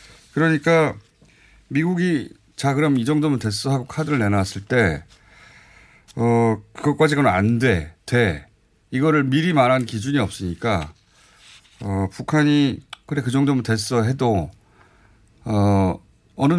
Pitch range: 100-140 Hz